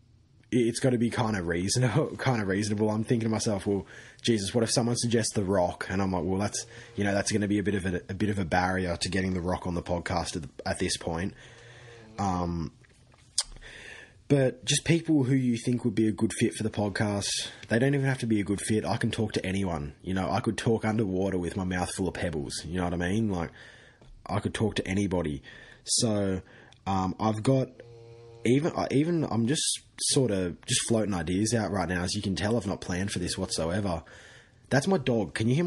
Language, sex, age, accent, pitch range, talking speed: English, male, 20-39, Australian, 90-115 Hz, 230 wpm